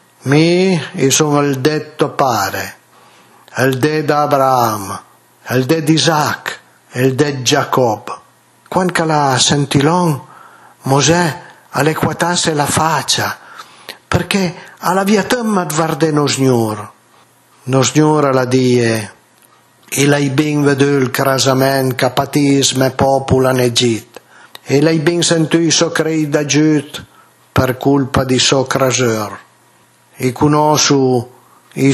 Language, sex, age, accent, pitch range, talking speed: Italian, male, 50-69, native, 130-160 Hz, 115 wpm